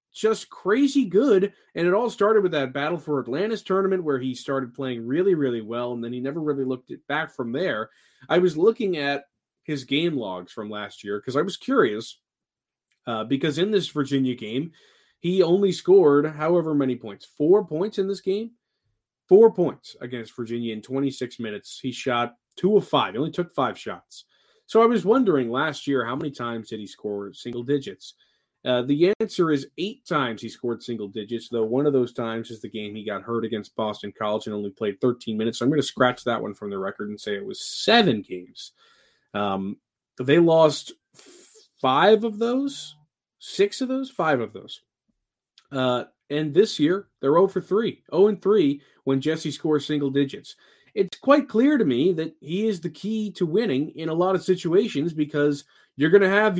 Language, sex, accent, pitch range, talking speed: English, male, American, 120-190 Hz, 195 wpm